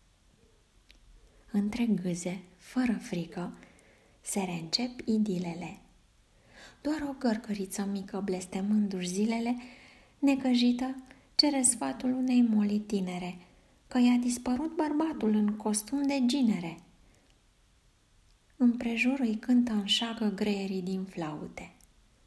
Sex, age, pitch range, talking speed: female, 20-39, 180-245 Hz, 90 wpm